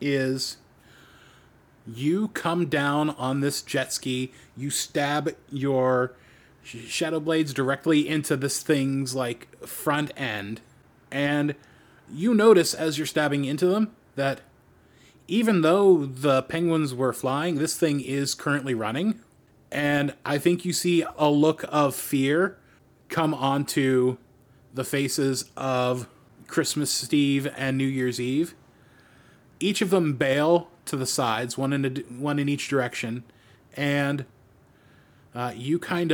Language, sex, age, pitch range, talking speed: English, male, 30-49, 130-160 Hz, 130 wpm